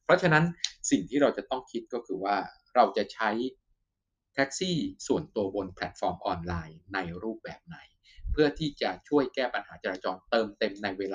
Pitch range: 95-135 Hz